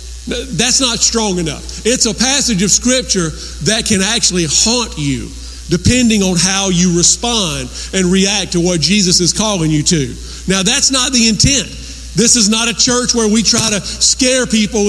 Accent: American